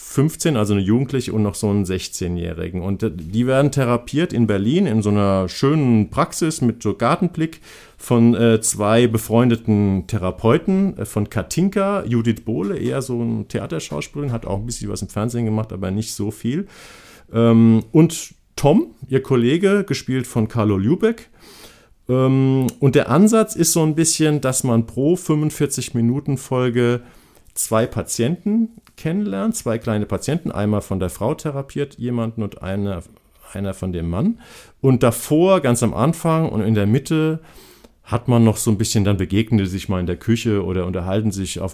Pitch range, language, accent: 100-130 Hz, German, German